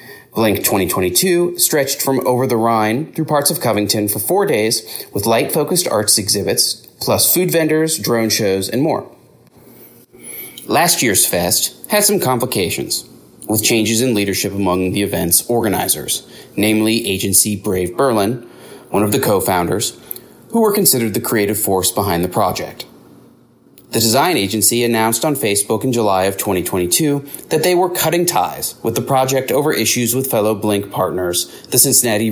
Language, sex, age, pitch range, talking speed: English, male, 30-49, 100-130 Hz, 150 wpm